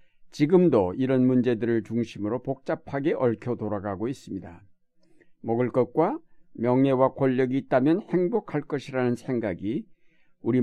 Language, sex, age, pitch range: Korean, male, 60-79, 115-165 Hz